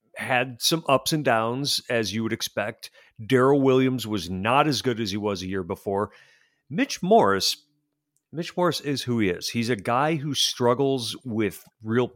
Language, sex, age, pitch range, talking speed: English, male, 40-59, 105-135 Hz, 180 wpm